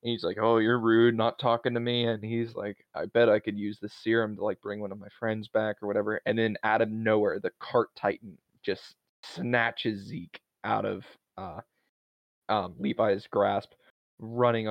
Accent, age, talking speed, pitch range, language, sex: American, 20-39, 190 wpm, 105-125 Hz, English, male